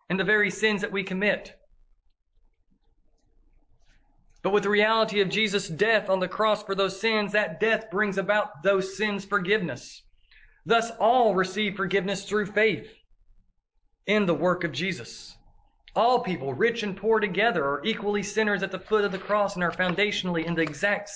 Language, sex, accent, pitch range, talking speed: English, male, American, 185-215 Hz, 165 wpm